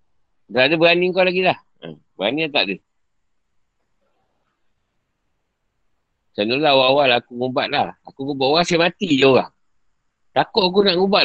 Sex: male